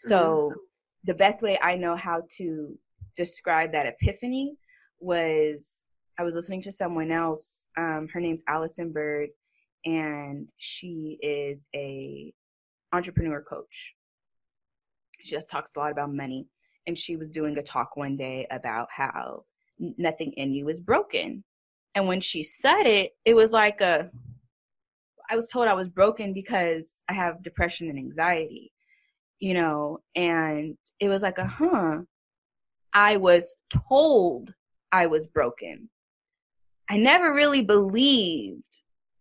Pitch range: 155-200 Hz